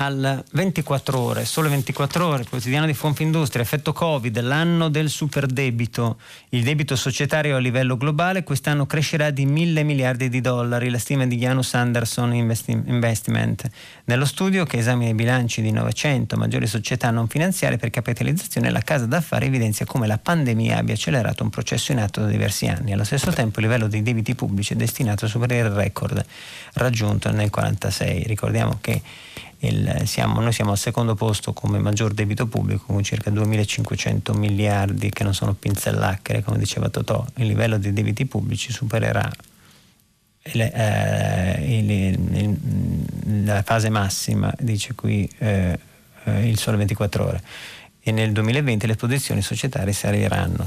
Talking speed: 155 wpm